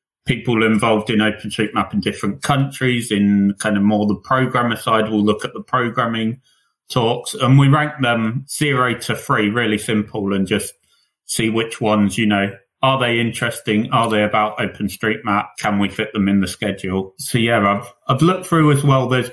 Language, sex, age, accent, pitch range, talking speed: English, male, 30-49, British, 110-135 Hz, 185 wpm